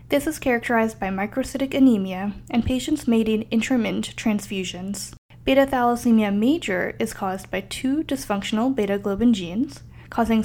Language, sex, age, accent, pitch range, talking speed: English, female, 10-29, American, 195-255 Hz, 125 wpm